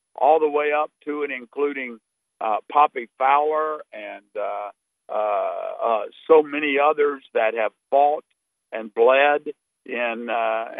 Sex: male